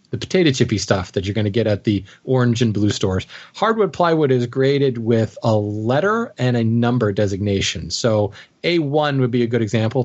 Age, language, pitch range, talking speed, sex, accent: 30-49, English, 115-140 Hz, 195 wpm, male, American